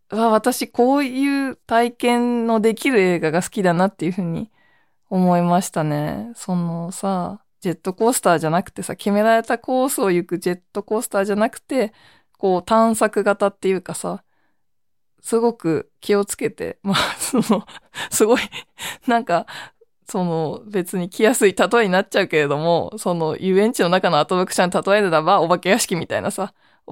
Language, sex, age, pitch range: Japanese, female, 20-39, 180-225 Hz